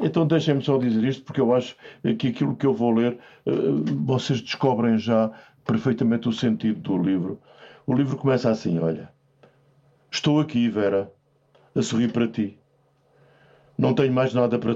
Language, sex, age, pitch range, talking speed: Portuguese, male, 50-69, 110-145 Hz, 160 wpm